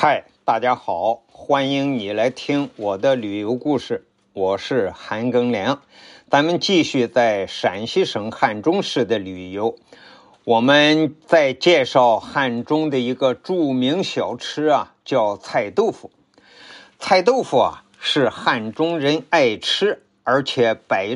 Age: 50-69